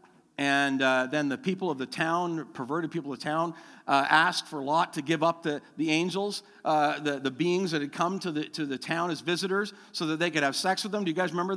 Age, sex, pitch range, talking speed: 50-69, male, 160-260 Hz, 255 wpm